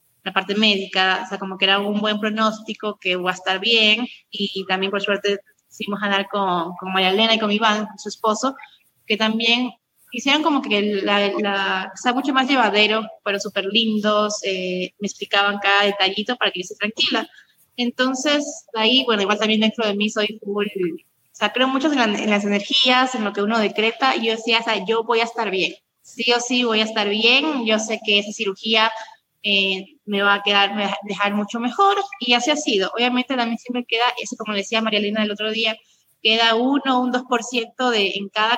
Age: 20-39